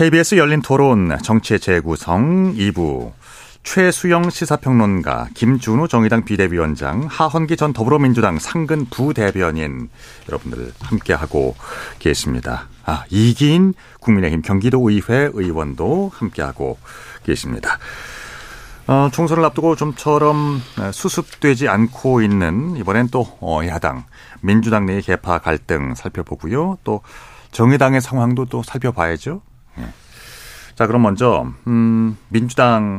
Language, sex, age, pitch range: Korean, male, 40-59, 100-145 Hz